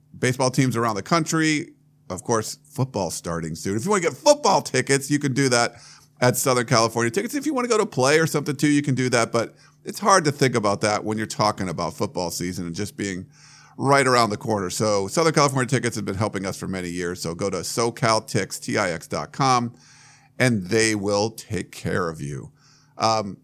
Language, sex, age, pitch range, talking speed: English, male, 50-69, 105-145 Hz, 210 wpm